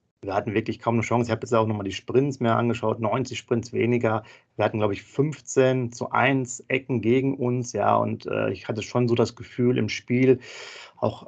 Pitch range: 105-120 Hz